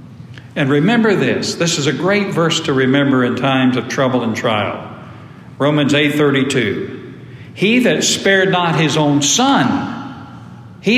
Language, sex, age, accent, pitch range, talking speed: English, male, 60-79, American, 145-195 Hz, 150 wpm